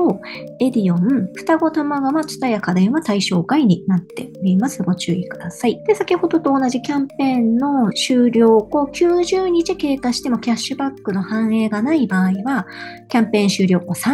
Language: Japanese